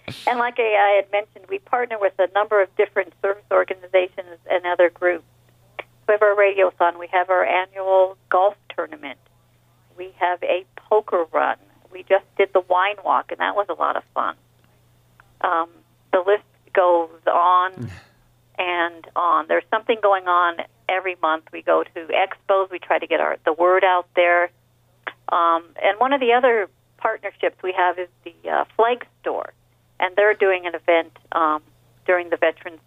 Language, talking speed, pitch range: English, 175 wpm, 165-195 Hz